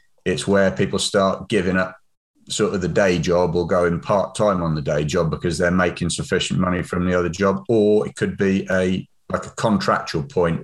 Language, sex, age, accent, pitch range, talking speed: English, male, 30-49, British, 85-95 Hz, 205 wpm